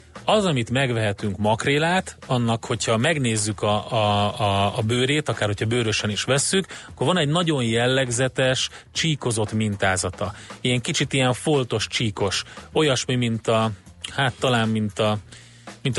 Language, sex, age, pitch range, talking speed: Hungarian, male, 30-49, 105-130 Hz, 140 wpm